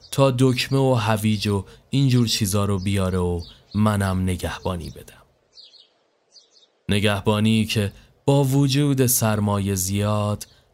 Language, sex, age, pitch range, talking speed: Persian, male, 30-49, 100-130 Hz, 105 wpm